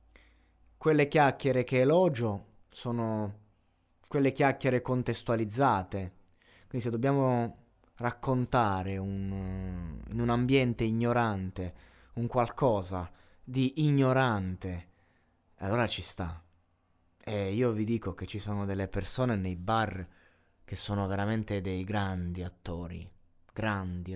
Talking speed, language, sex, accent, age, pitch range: 105 wpm, Italian, male, native, 20-39, 90-120 Hz